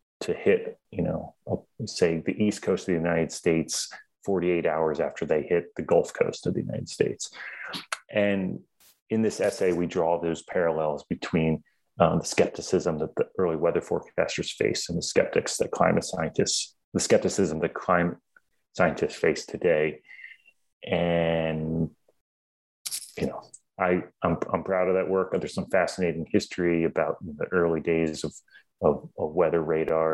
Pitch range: 80-95 Hz